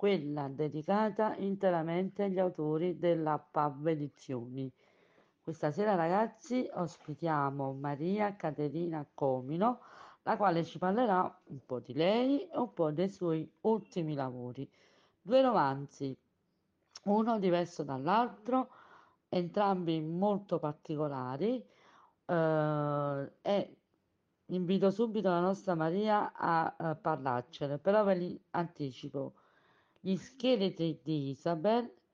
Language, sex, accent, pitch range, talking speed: Italian, female, native, 150-190 Hz, 105 wpm